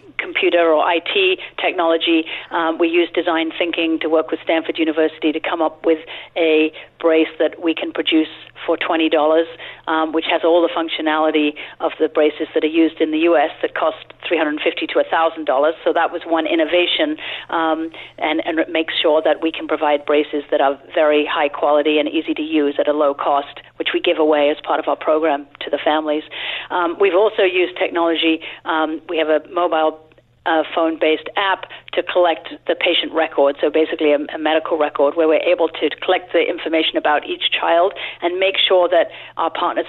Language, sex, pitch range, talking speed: English, female, 155-175 Hz, 200 wpm